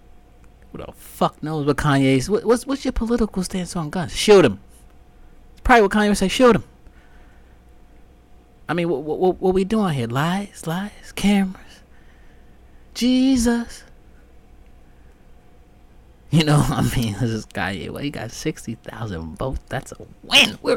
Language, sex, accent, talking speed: English, male, American, 150 wpm